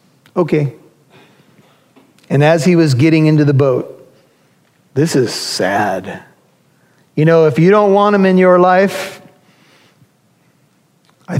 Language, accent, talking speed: English, American, 120 wpm